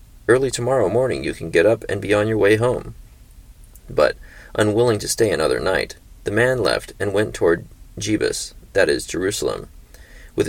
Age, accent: 30-49, American